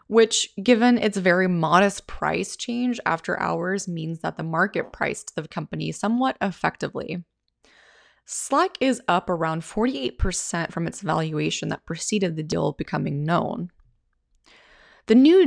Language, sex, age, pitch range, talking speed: English, female, 20-39, 165-225 Hz, 130 wpm